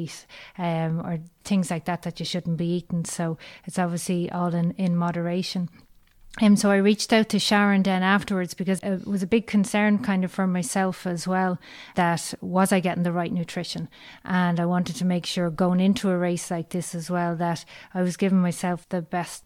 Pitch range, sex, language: 170-190 Hz, female, English